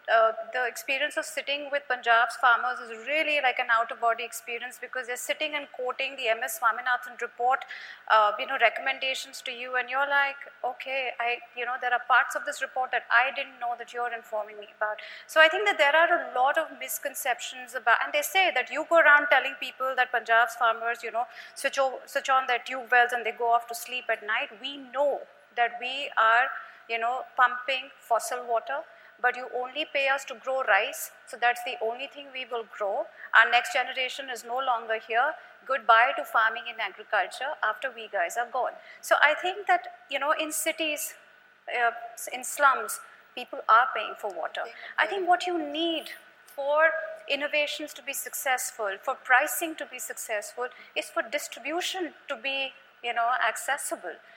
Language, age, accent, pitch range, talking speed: English, 30-49, Indian, 240-295 Hz, 195 wpm